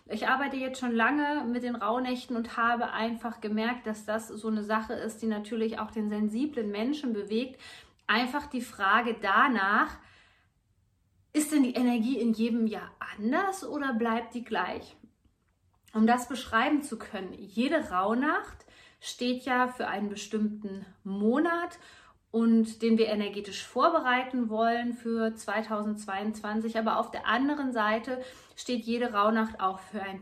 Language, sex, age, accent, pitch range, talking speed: German, female, 30-49, German, 215-255 Hz, 145 wpm